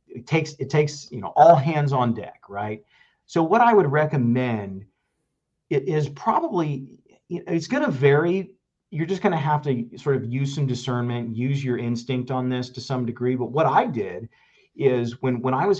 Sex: male